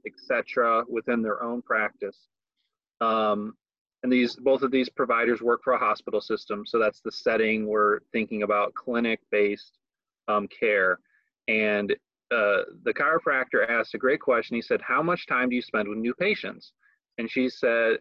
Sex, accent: male, American